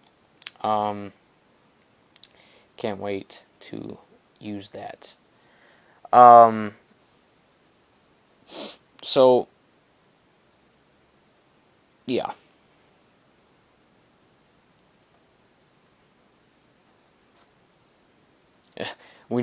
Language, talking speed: English, 30 wpm